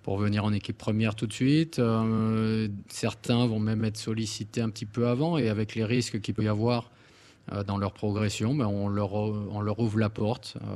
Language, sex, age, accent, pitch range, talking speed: French, male, 20-39, French, 105-120 Hz, 185 wpm